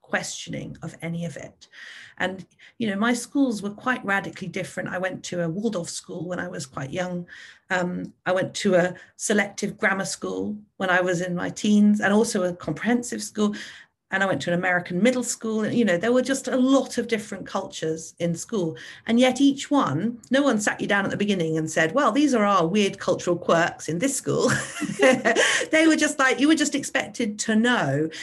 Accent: British